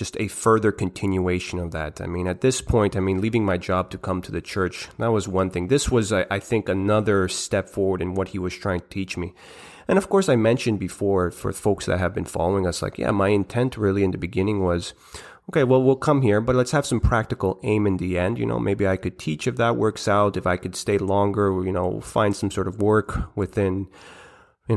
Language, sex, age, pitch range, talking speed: English, male, 30-49, 95-110 Hz, 240 wpm